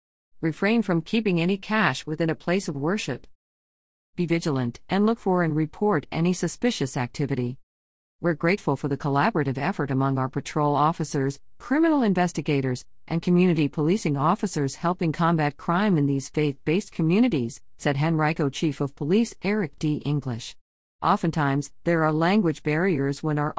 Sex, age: female, 50-69